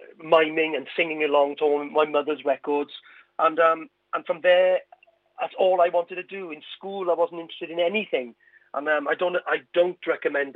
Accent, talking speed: British, 190 wpm